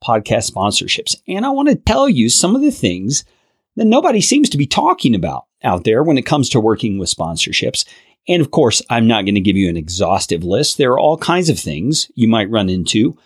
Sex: male